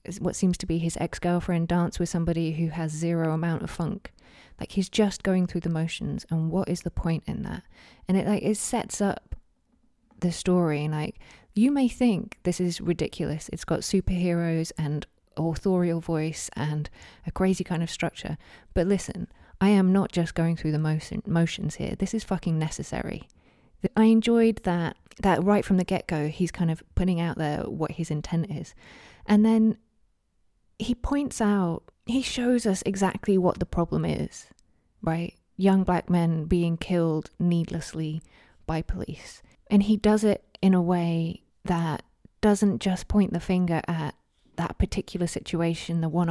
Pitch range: 165-205 Hz